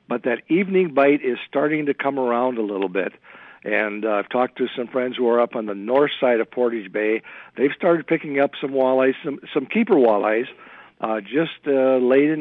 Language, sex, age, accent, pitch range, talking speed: English, male, 60-79, American, 105-135 Hz, 215 wpm